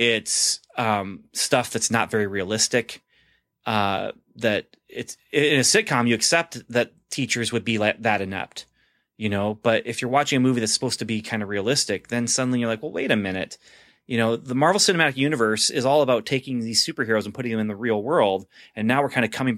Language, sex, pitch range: English, male, 110-130 Hz